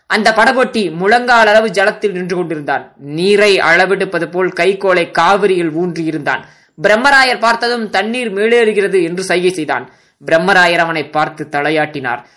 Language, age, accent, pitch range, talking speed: Tamil, 20-39, native, 155-210 Hz, 115 wpm